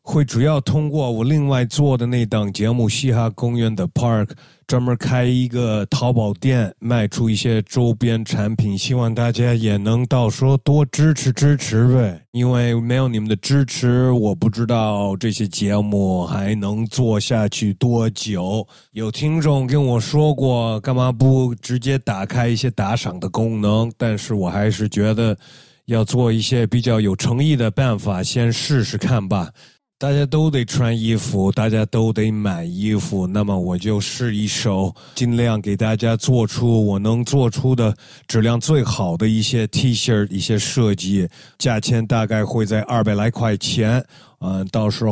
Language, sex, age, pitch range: Chinese, male, 30-49, 105-125 Hz